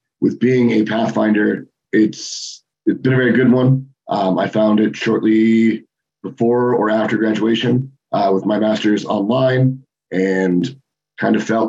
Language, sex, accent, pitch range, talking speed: English, male, American, 105-115 Hz, 150 wpm